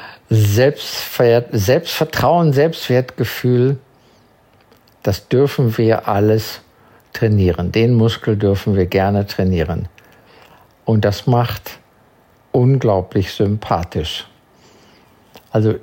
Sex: male